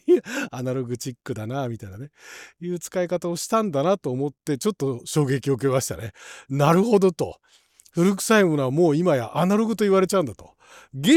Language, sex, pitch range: Japanese, male, 125-195 Hz